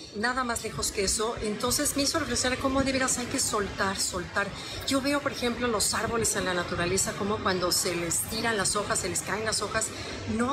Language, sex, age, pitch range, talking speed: Spanish, female, 40-59, 185-240 Hz, 215 wpm